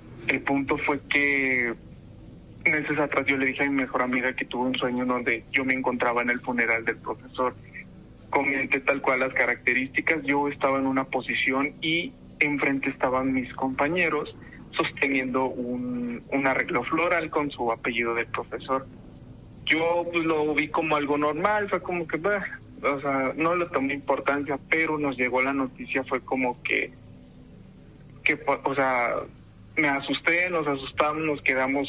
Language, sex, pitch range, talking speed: Spanish, male, 125-150 Hz, 160 wpm